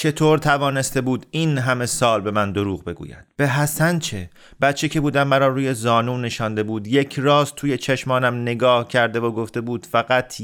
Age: 30-49